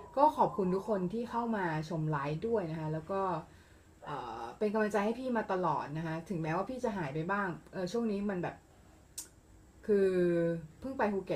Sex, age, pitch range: female, 20-39, 160-220 Hz